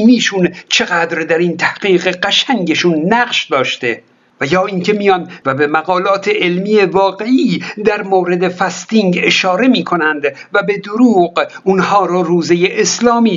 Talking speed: 130 wpm